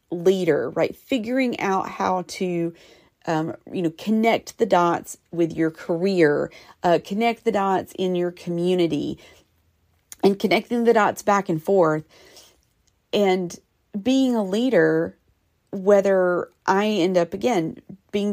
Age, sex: 40-59, female